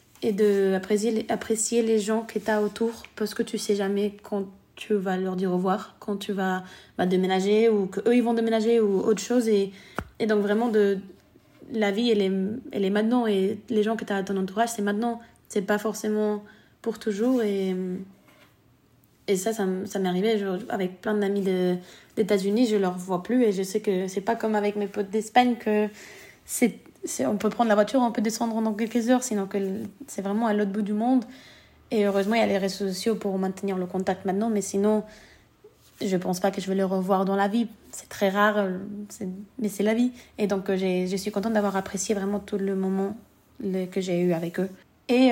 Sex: female